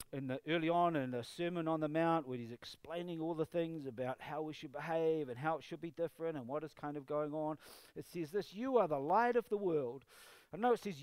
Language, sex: English, male